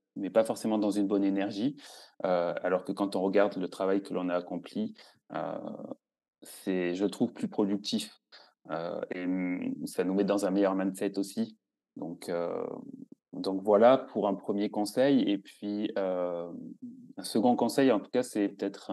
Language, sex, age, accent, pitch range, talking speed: French, male, 20-39, French, 95-110 Hz, 170 wpm